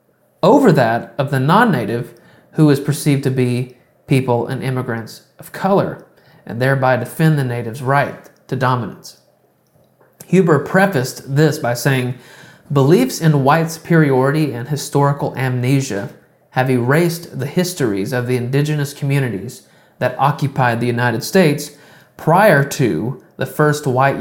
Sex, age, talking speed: male, 30-49, 130 wpm